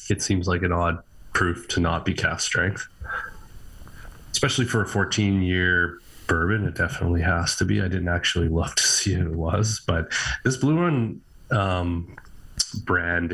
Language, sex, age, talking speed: English, male, 30-49, 165 wpm